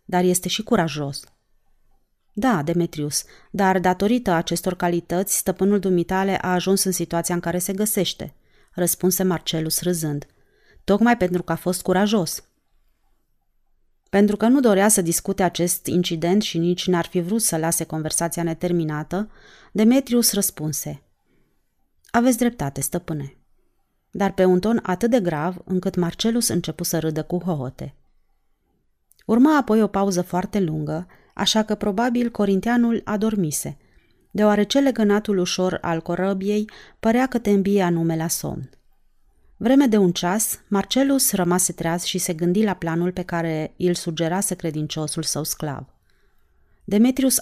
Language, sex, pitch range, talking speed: Romanian, female, 165-205 Hz, 135 wpm